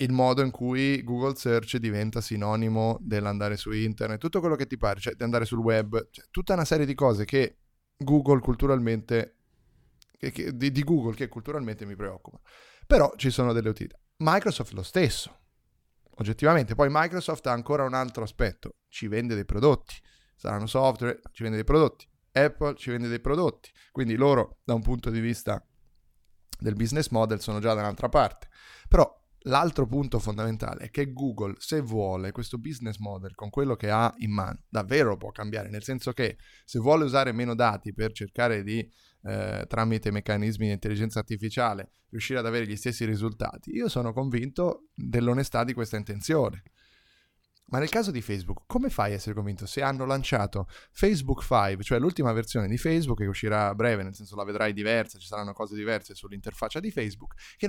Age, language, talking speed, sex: 30-49, Italian, 175 wpm, male